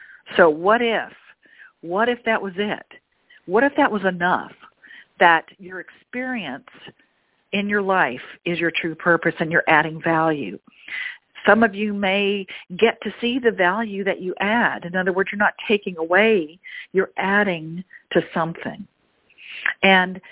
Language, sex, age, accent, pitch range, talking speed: English, female, 50-69, American, 175-230 Hz, 150 wpm